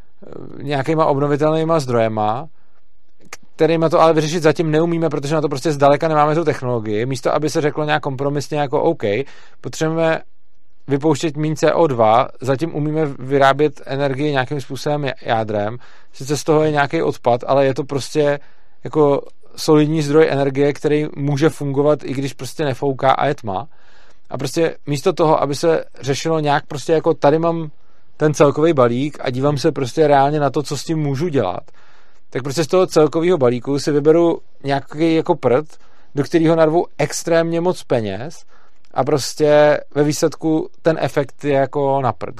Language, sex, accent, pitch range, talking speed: Czech, male, native, 135-160 Hz, 160 wpm